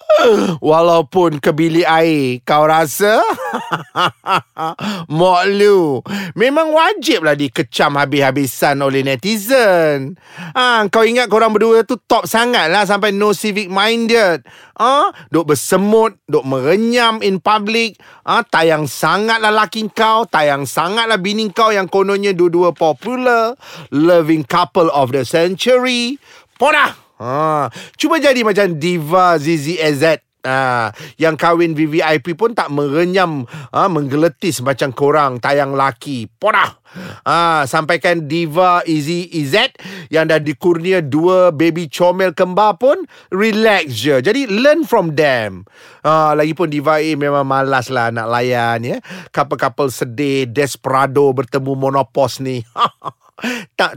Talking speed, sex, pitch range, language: 130 wpm, male, 145-205 Hz, Malay